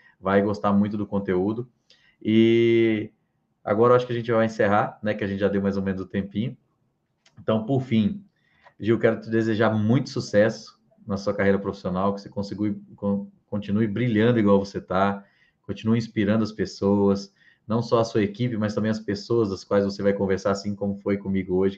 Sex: male